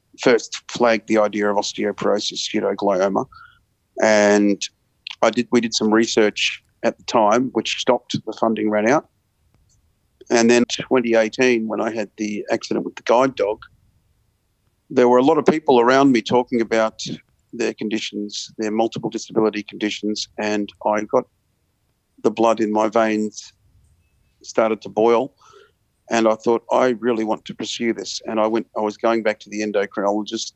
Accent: Australian